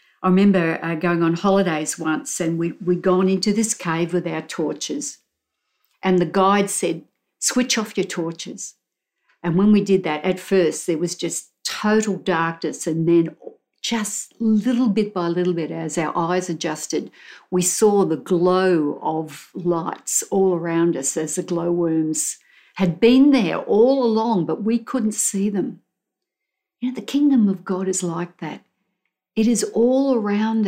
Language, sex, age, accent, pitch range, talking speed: English, female, 60-79, Australian, 175-220 Hz, 165 wpm